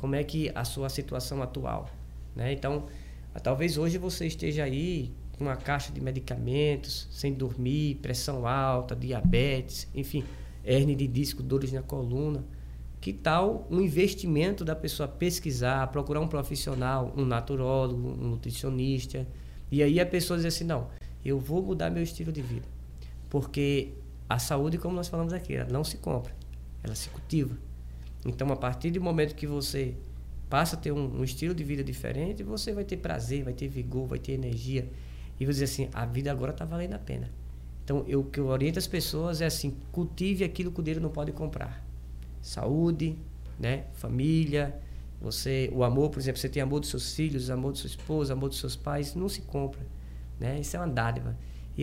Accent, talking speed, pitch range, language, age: Brazilian, 185 wpm, 120-150 Hz, Portuguese, 20-39